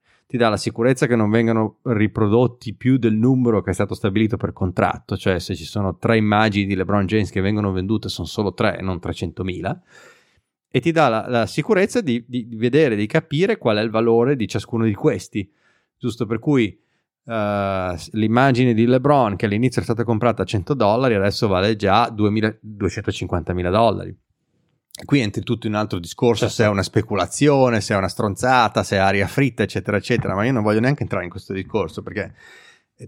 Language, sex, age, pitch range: Italian, male, 30-49, 100-120 Hz